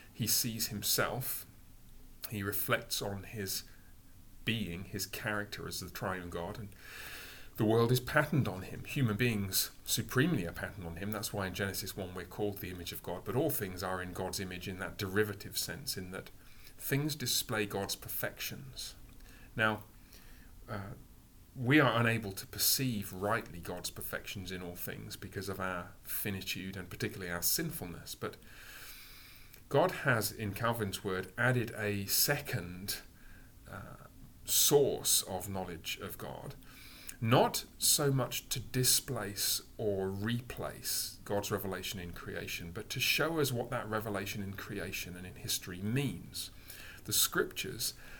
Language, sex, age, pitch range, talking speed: English, male, 30-49, 95-120 Hz, 145 wpm